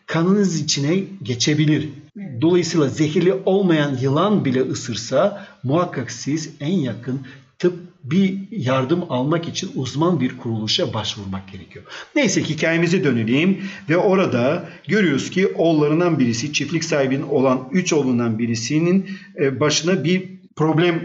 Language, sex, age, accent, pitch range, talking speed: Turkish, male, 50-69, native, 135-185 Hz, 115 wpm